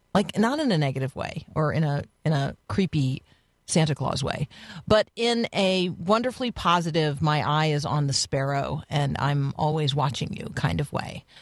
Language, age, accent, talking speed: English, 40-59, American, 180 wpm